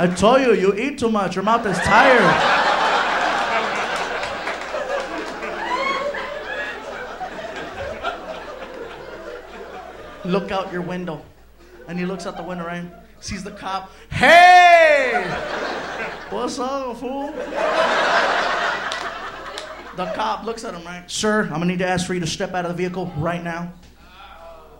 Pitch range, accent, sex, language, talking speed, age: 180-250 Hz, American, male, English, 125 wpm, 20-39